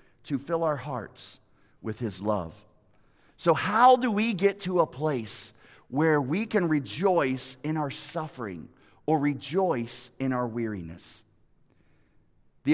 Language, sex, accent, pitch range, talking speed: English, male, American, 135-210 Hz, 130 wpm